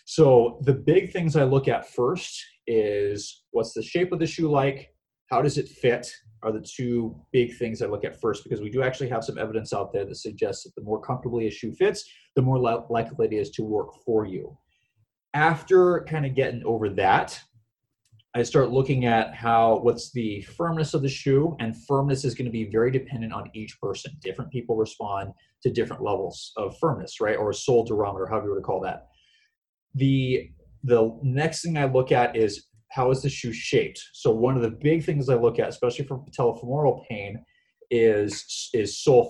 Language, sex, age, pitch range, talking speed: English, male, 30-49, 115-155 Hz, 200 wpm